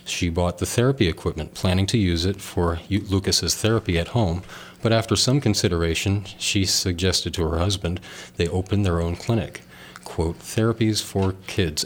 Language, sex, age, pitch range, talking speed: English, male, 40-59, 85-100 Hz, 160 wpm